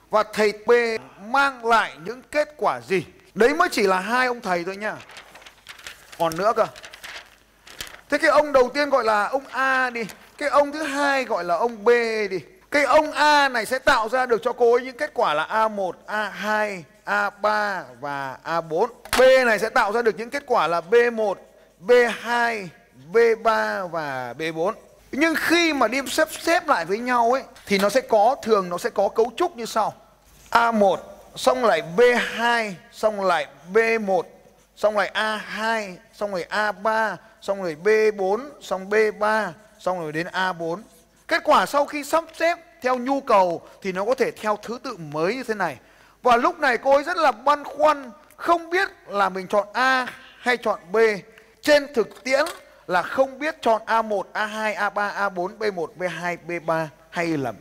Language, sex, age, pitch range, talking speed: Vietnamese, male, 20-39, 195-260 Hz, 180 wpm